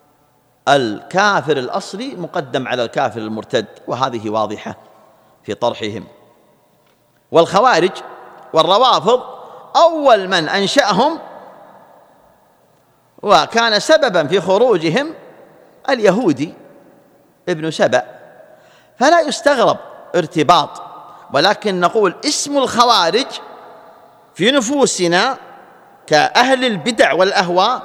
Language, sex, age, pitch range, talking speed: Arabic, male, 50-69, 145-200 Hz, 75 wpm